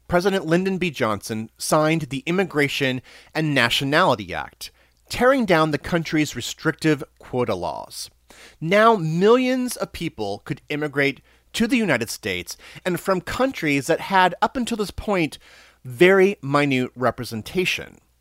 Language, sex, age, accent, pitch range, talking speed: English, male, 30-49, American, 130-190 Hz, 130 wpm